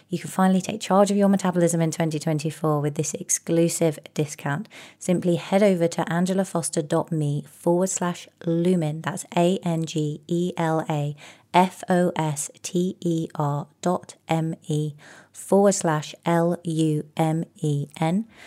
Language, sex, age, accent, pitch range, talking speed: English, female, 30-49, British, 155-185 Hz, 95 wpm